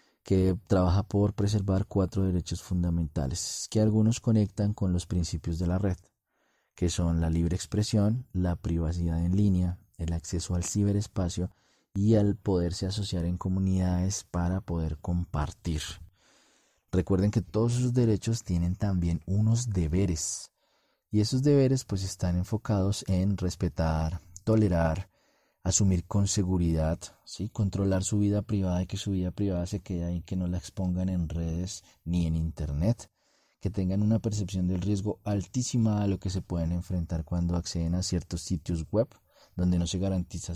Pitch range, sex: 85-105 Hz, male